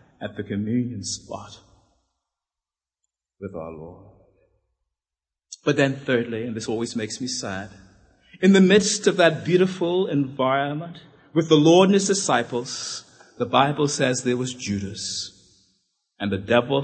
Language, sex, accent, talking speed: English, male, American, 135 wpm